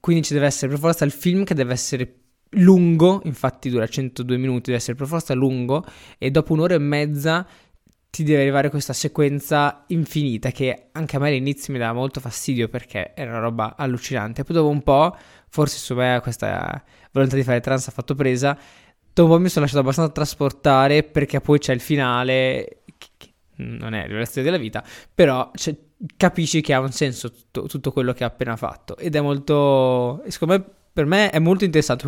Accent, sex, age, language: native, male, 20-39, Italian